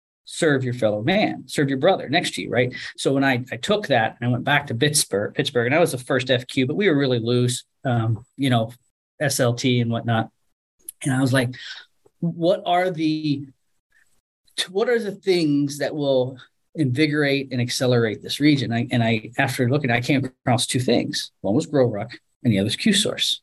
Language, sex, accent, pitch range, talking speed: English, male, American, 120-150 Hz, 195 wpm